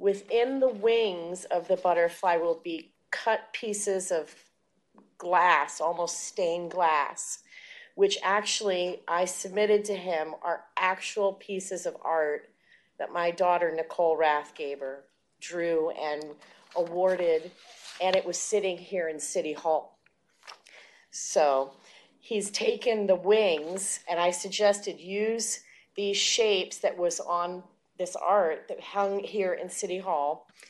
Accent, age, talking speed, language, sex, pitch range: American, 40-59, 125 wpm, English, female, 175-210 Hz